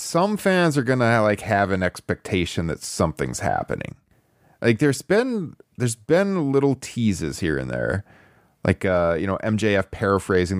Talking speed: 160 wpm